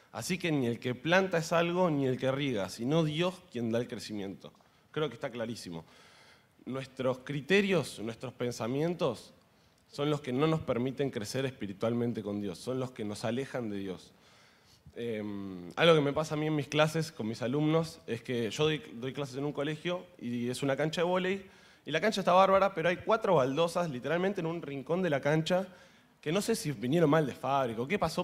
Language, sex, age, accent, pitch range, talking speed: Spanish, male, 20-39, Argentinian, 115-165 Hz, 210 wpm